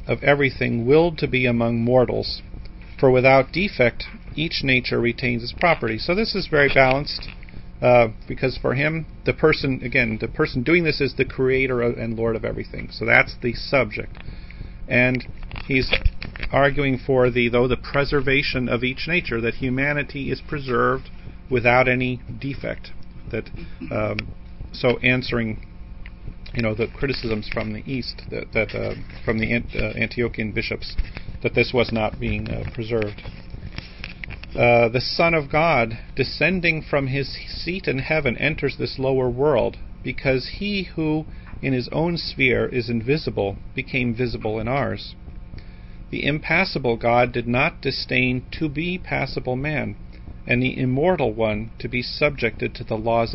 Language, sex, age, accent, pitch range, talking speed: English, male, 40-59, American, 115-140 Hz, 150 wpm